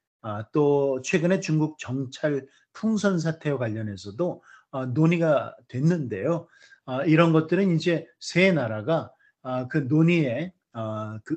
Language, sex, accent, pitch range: Korean, male, native, 125-160 Hz